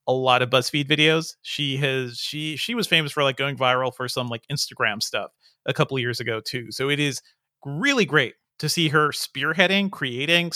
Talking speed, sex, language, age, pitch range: 205 wpm, male, English, 30-49, 130-165 Hz